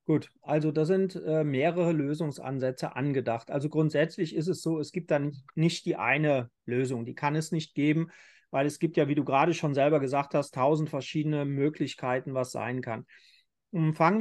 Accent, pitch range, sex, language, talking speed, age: German, 145-190 Hz, male, German, 185 wpm, 40-59